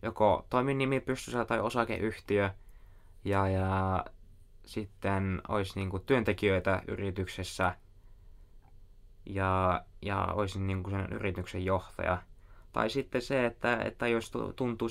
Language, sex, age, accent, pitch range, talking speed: Finnish, male, 20-39, native, 95-115 Hz, 115 wpm